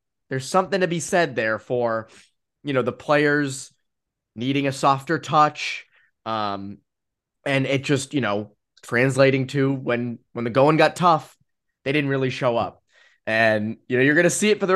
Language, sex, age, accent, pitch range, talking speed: English, male, 20-39, American, 115-160 Hz, 180 wpm